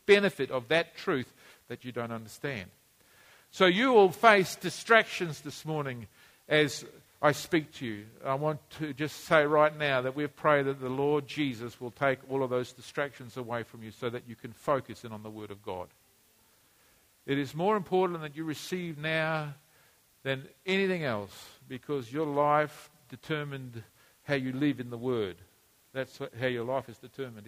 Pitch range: 120-145 Hz